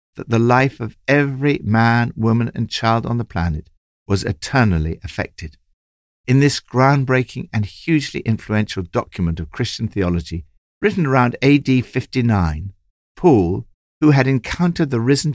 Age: 60-79